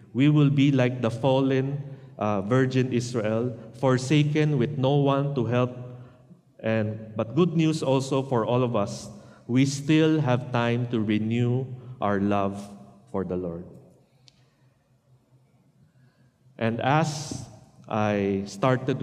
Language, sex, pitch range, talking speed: English, male, 105-130 Hz, 125 wpm